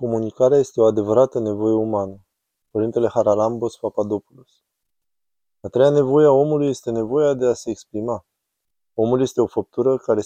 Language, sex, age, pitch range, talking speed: Romanian, male, 20-39, 110-130 Hz, 145 wpm